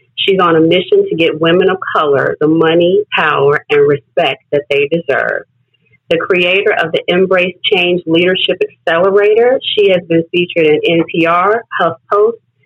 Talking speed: 150 wpm